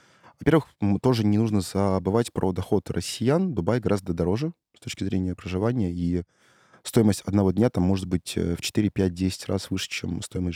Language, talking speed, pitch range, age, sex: Russian, 160 wpm, 95-115 Hz, 20-39, male